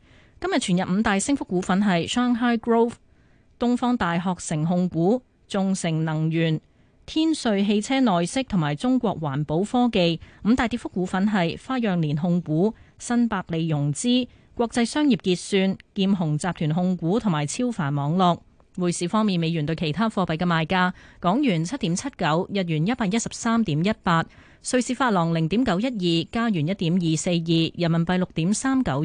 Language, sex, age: Chinese, female, 20-39